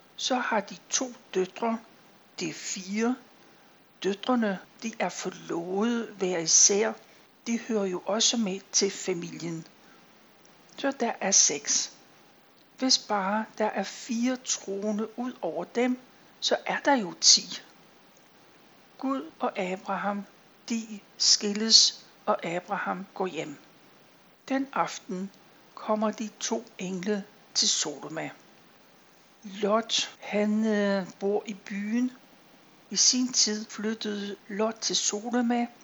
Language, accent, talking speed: Danish, native, 110 wpm